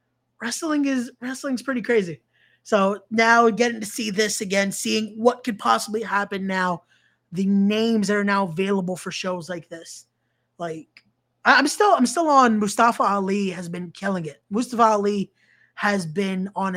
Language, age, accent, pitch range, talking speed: English, 20-39, American, 190-235 Hz, 160 wpm